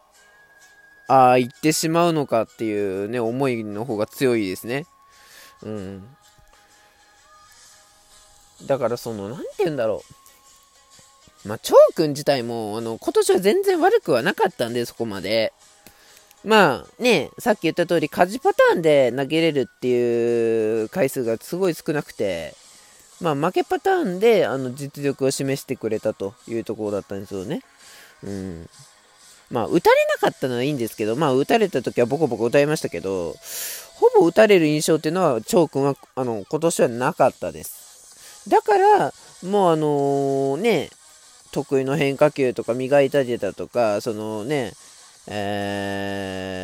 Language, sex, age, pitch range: Japanese, male, 20-39, 115-180 Hz